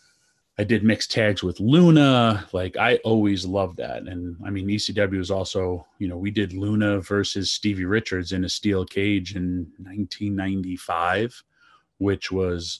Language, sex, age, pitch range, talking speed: English, male, 30-49, 90-105 Hz, 155 wpm